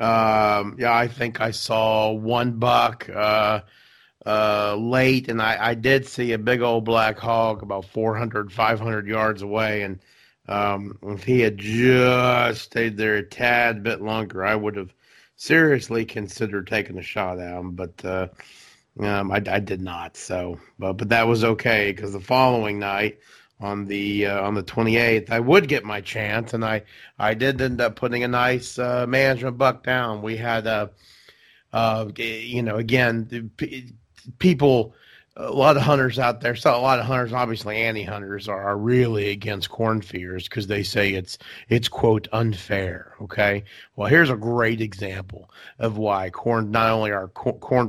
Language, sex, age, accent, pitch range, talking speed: English, male, 40-59, American, 100-120 Hz, 175 wpm